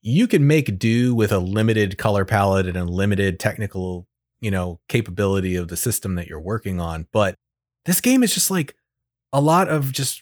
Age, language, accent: 30-49, English, American